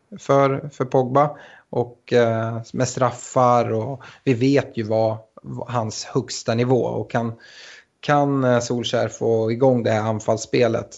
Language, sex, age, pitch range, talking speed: Swedish, male, 20-39, 115-130 Hz, 130 wpm